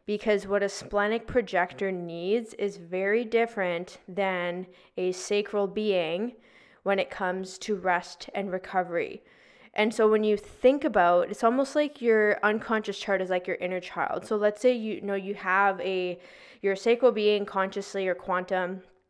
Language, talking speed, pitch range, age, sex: English, 165 wpm, 190-215 Hz, 10-29, female